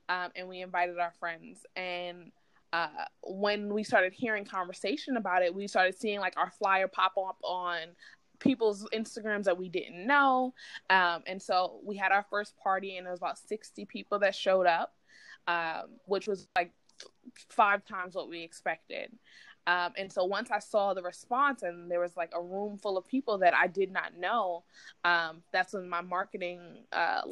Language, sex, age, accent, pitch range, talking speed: English, female, 20-39, American, 175-205 Hz, 185 wpm